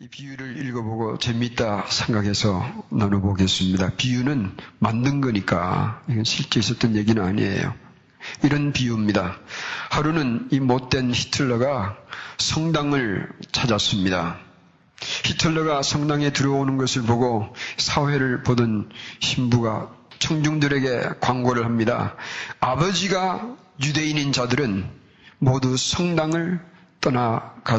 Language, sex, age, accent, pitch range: Korean, male, 40-59, native, 115-145 Hz